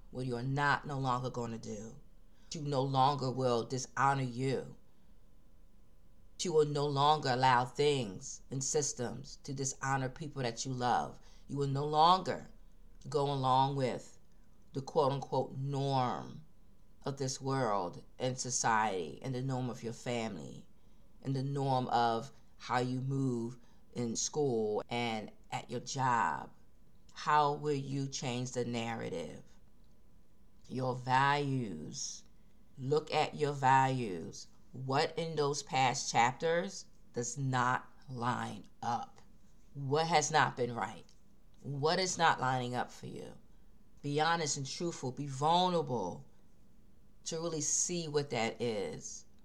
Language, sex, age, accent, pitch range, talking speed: English, female, 40-59, American, 125-150 Hz, 130 wpm